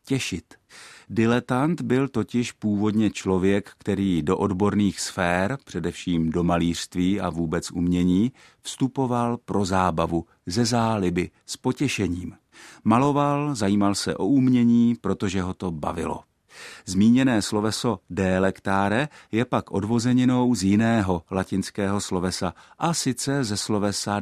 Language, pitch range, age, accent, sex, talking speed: Czech, 90-120 Hz, 50-69, native, male, 115 wpm